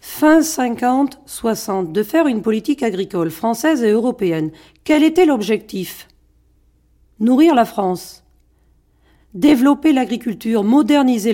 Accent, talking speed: French, 100 wpm